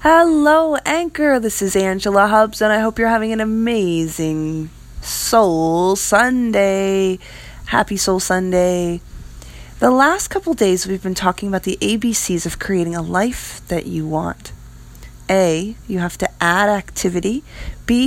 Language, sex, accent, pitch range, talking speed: English, female, American, 160-215 Hz, 140 wpm